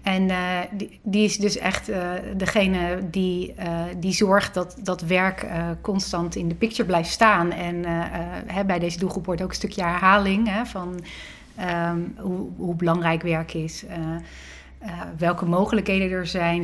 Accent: Dutch